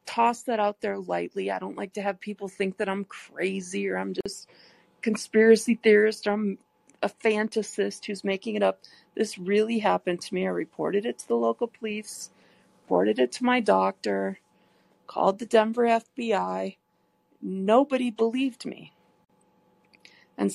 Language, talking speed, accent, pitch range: English, 150 wpm, American, 190-230 Hz